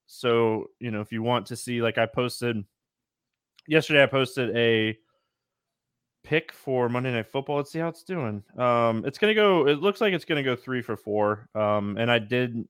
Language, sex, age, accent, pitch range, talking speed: English, male, 20-39, American, 115-140 Hz, 210 wpm